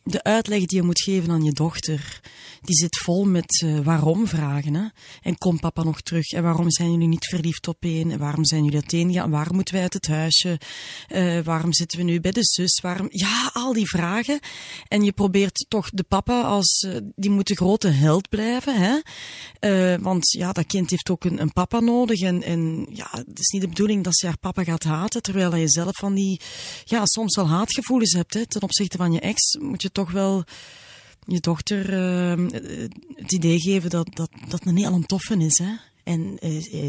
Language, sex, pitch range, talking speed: Dutch, female, 170-215 Hz, 205 wpm